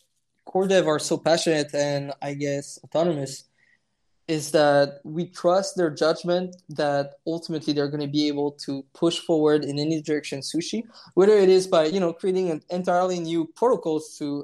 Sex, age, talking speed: male, 20-39, 170 wpm